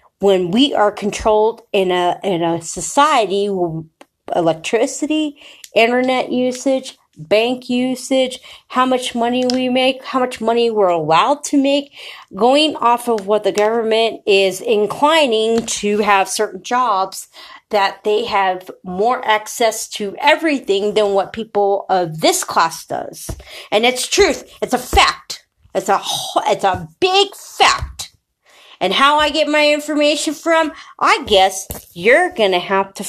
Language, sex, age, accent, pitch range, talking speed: English, female, 40-59, American, 200-300 Hz, 145 wpm